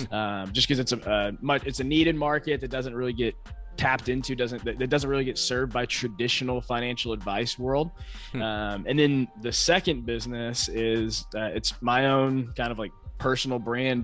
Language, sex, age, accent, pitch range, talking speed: English, male, 20-39, American, 110-130 Hz, 190 wpm